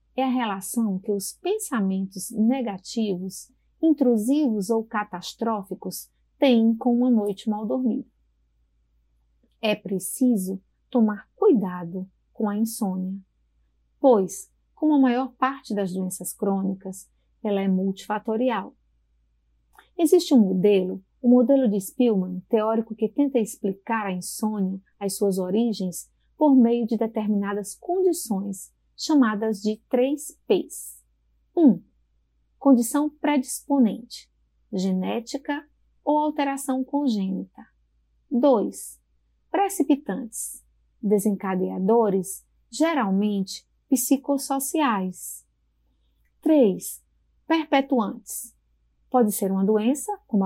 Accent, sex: Brazilian, female